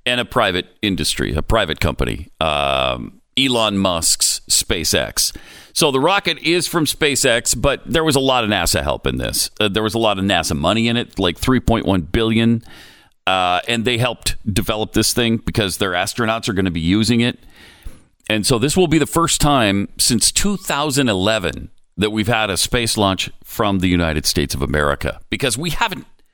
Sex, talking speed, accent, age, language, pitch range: male, 185 wpm, American, 40-59, English, 95-140 Hz